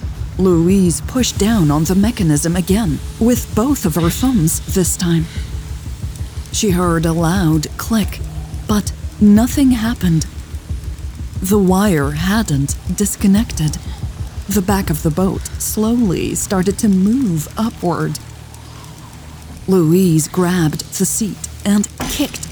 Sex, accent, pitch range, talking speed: female, American, 160-225 Hz, 110 wpm